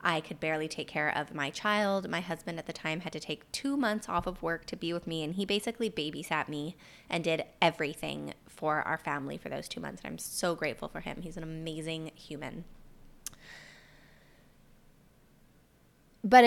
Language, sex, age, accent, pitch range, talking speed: English, female, 20-39, American, 160-200 Hz, 185 wpm